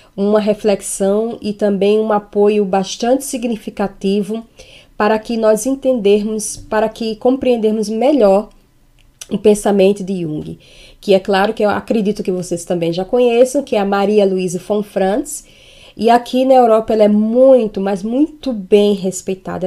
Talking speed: 150 wpm